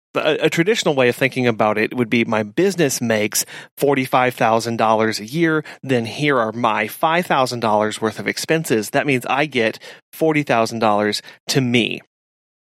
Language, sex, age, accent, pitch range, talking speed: English, male, 30-49, American, 120-170 Hz, 145 wpm